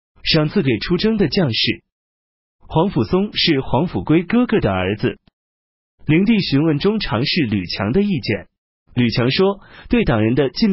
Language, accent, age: Chinese, native, 30-49